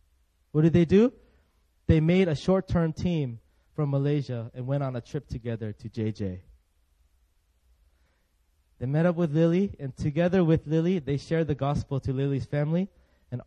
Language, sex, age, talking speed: English, male, 20-39, 160 wpm